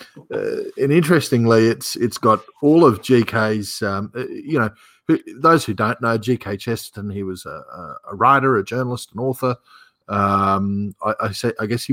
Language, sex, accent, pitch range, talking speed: English, male, Australian, 100-125 Hz, 170 wpm